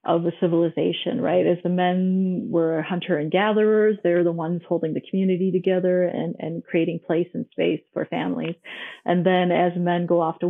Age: 30-49